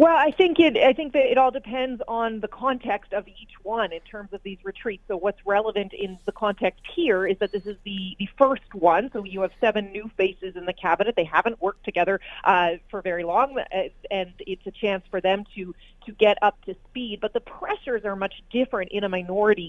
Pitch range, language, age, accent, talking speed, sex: 185-225 Hz, English, 30-49, American, 225 wpm, female